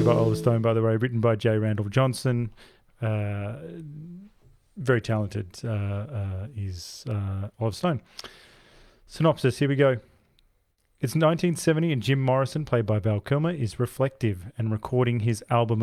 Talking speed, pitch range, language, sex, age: 150 wpm, 110-130 Hz, English, male, 30-49